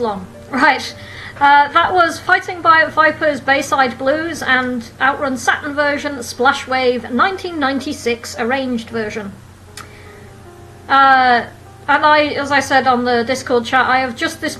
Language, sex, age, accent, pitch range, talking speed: English, female, 40-59, British, 230-300 Hz, 135 wpm